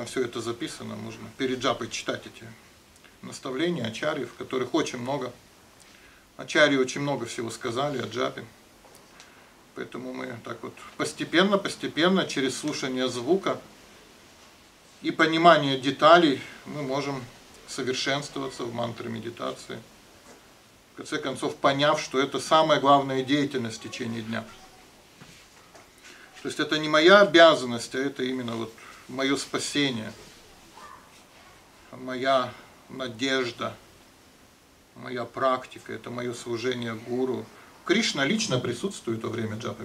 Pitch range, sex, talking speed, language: 115-140 Hz, male, 115 wpm, Russian